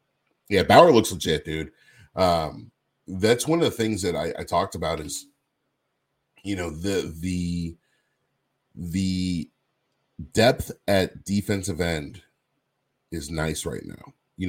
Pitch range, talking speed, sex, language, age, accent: 80-90 Hz, 130 wpm, male, English, 30-49, American